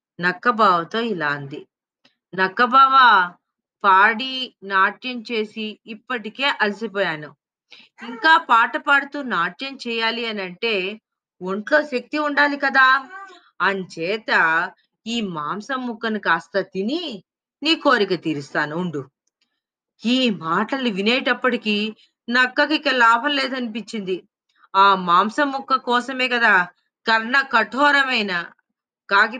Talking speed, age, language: 90 wpm, 20-39, Telugu